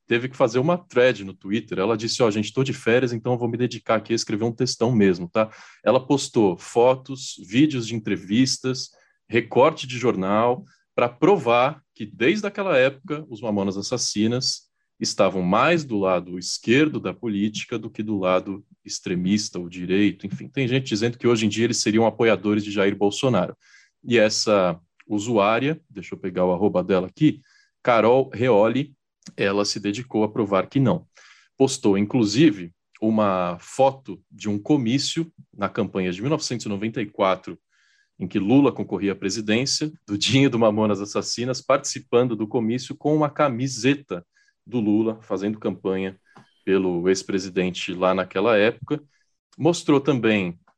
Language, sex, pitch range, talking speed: Portuguese, male, 100-130 Hz, 155 wpm